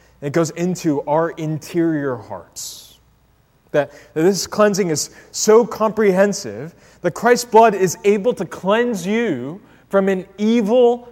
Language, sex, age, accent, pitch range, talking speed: English, male, 30-49, American, 125-195 Hz, 130 wpm